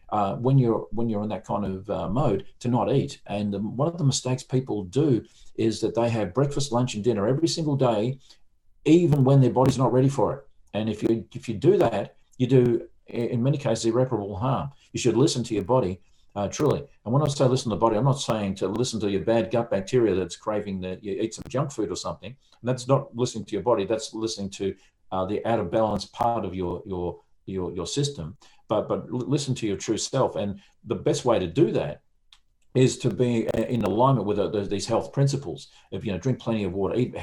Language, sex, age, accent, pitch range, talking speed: English, male, 50-69, Australian, 105-130 Hz, 235 wpm